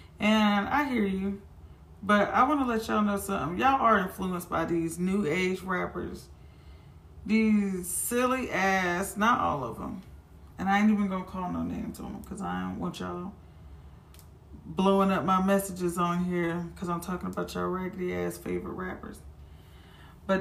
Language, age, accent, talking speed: English, 20-39, American, 170 wpm